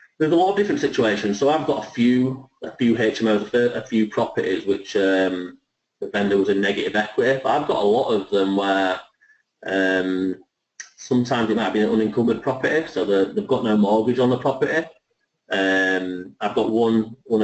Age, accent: 30-49, British